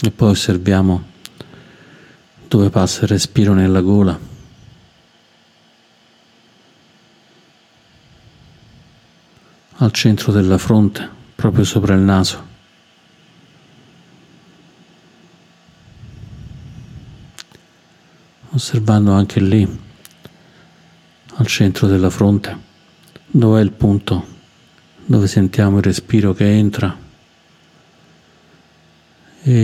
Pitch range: 100-125 Hz